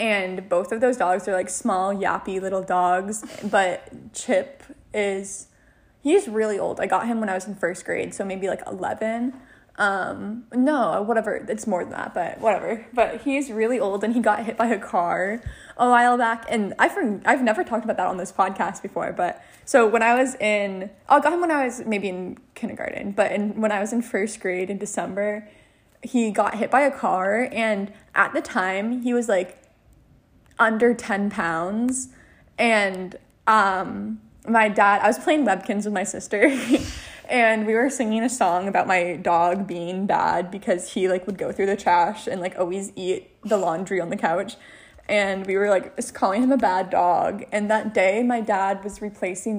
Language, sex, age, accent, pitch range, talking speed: English, female, 20-39, American, 195-235 Hz, 195 wpm